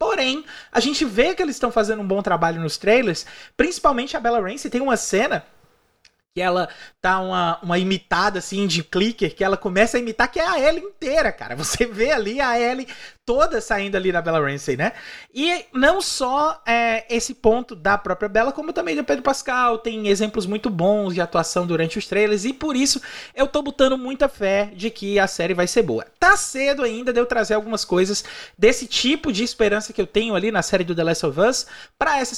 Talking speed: 215 wpm